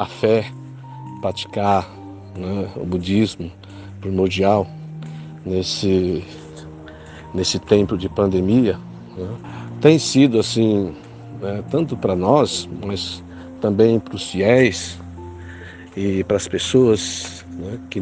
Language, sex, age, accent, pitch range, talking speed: Portuguese, male, 50-69, Brazilian, 95-120 Hz, 95 wpm